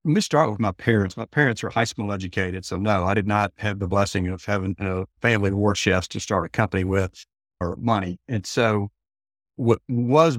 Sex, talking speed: male, 220 wpm